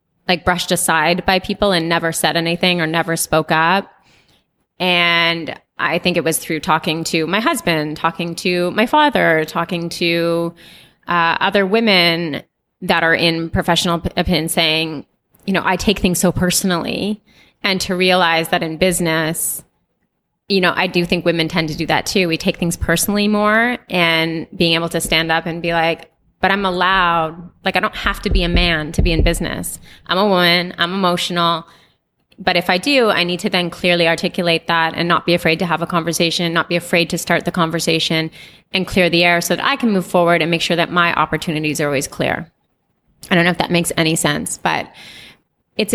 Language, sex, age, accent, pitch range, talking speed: English, female, 20-39, American, 165-185 Hz, 195 wpm